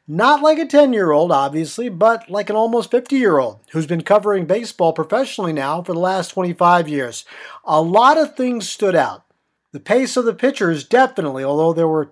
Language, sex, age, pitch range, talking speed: English, male, 50-69, 165-225 Hz, 180 wpm